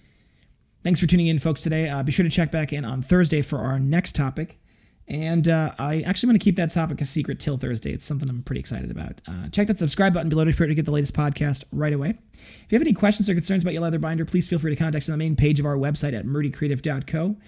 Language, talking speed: English, 270 wpm